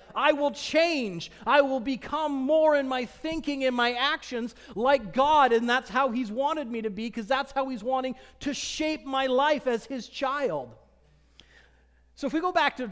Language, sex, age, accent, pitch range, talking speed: English, male, 40-59, American, 195-270 Hz, 190 wpm